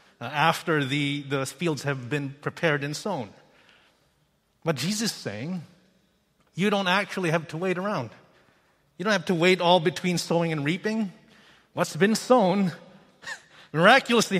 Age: 30-49